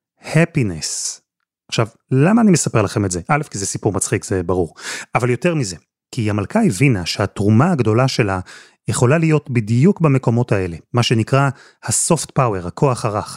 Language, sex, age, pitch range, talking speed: Hebrew, male, 30-49, 110-140 Hz, 155 wpm